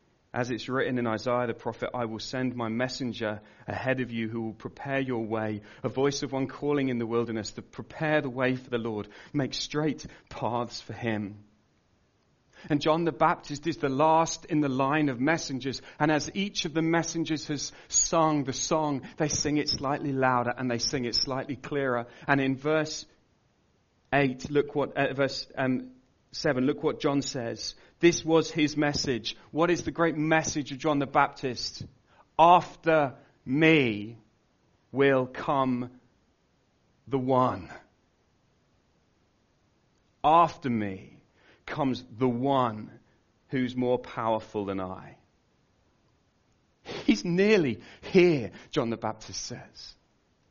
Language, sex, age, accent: English, male, 40-59, British